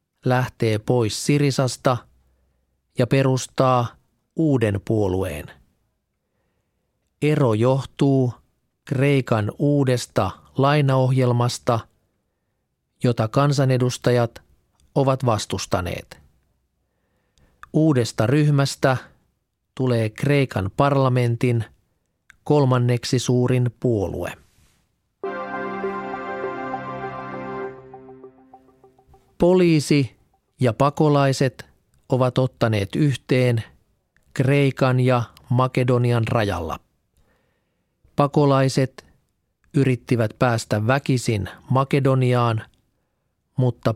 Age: 40-59